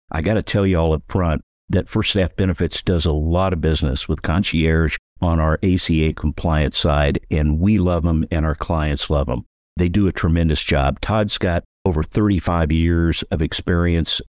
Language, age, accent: English, 50-69, American